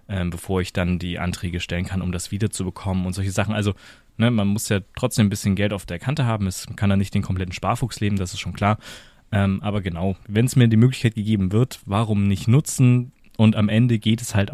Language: German